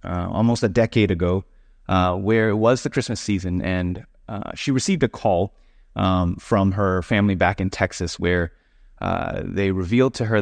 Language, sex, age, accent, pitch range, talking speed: English, male, 30-49, American, 90-105 Hz, 180 wpm